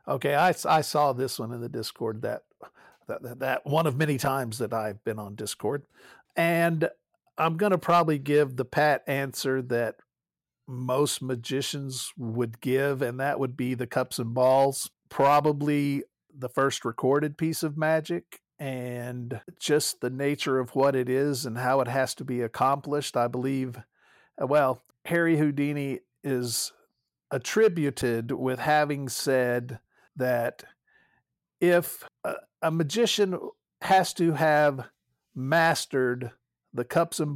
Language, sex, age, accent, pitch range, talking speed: English, male, 50-69, American, 125-150 Hz, 140 wpm